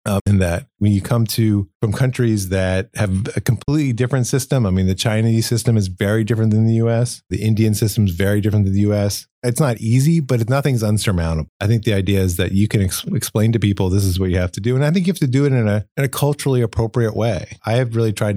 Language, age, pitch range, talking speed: English, 30-49, 105-130 Hz, 250 wpm